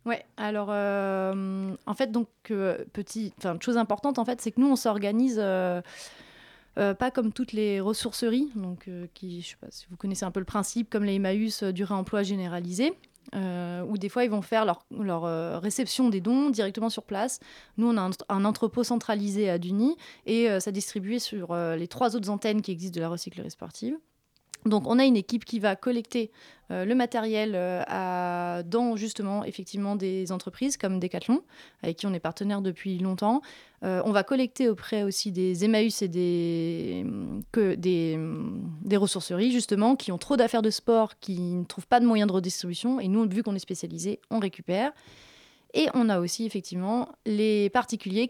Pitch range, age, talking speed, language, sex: 190-235 Hz, 30-49, 195 wpm, French, female